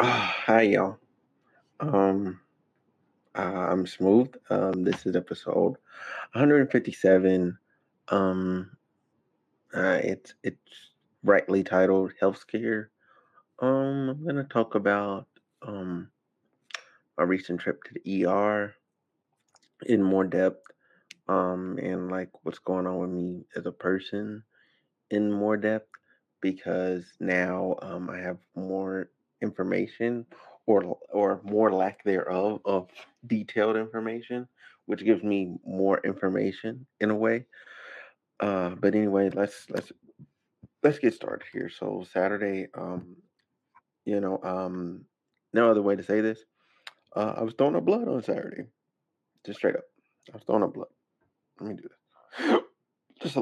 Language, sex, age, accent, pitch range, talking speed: English, male, 20-39, American, 95-110 Hz, 130 wpm